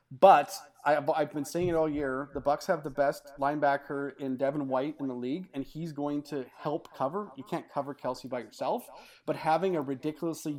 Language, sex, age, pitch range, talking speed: English, male, 30-49, 135-160 Hz, 200 wpm